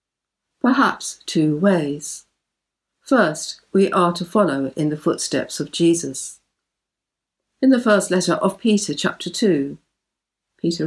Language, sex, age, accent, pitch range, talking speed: English, female, 60-79, British, 160-200 Hz, 120 wpm